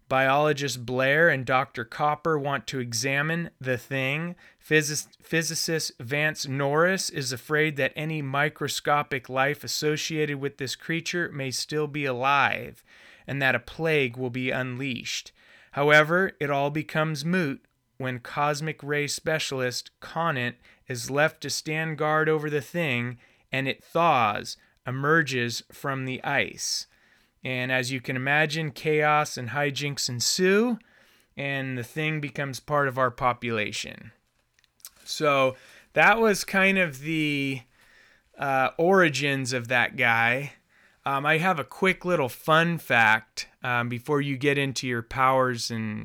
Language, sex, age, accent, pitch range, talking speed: English, male, 30-49, American, 125-155 Hz, 135 wpm